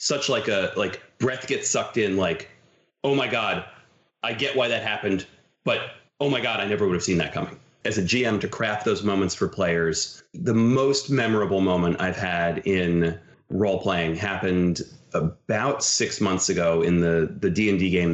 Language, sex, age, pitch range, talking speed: English, male, 30-49, 85-110 Hz, 180 wpm